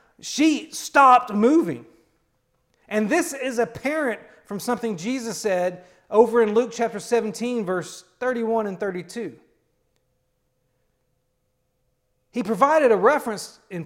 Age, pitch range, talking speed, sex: 40-59, 190-245 Hz, 110 wpm, male